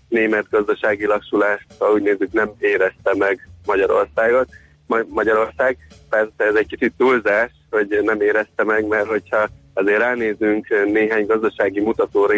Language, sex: Hungarian, male